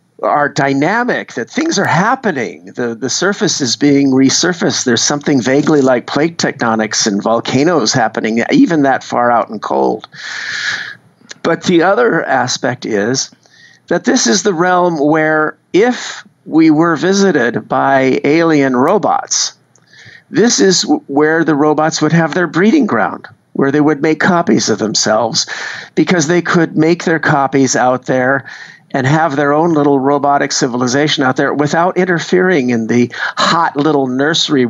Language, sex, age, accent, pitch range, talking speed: English, male, 50-69, American, 130-160 Hz, 150 wpm